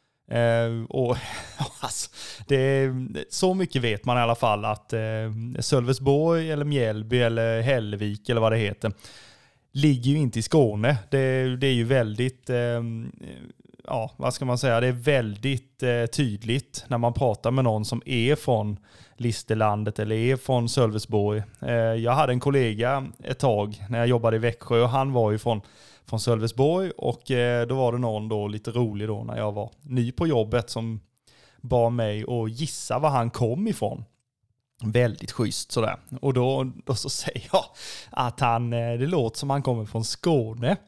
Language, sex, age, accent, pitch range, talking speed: Swedish, male, 20-39, native, 115-135 Hz, 165 wpm